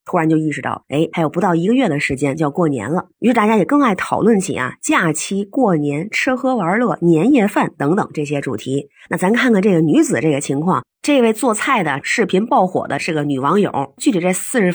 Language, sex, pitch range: Chinese, female, 160-250 Hz